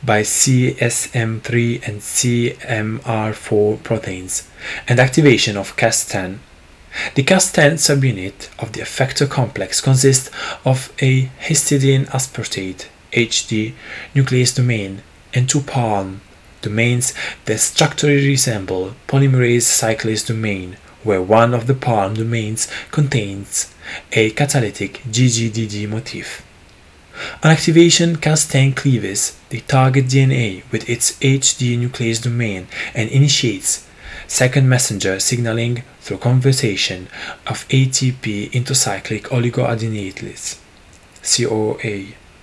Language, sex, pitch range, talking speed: English, male, 105-135 Hz, 100 wpm